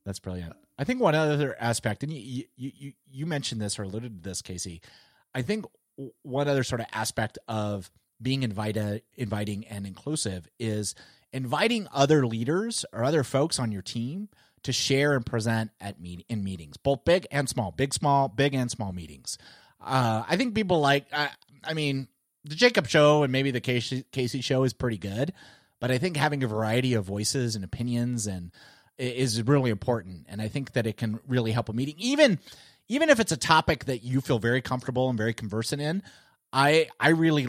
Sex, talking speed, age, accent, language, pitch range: male, 195 wpm, 30-49, American, English, 110-140 Hz